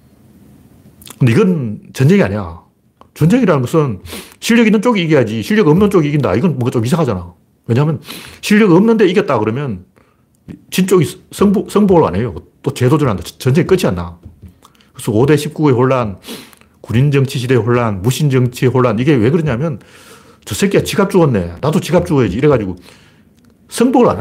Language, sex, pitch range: Korean, male, 115-185 Hz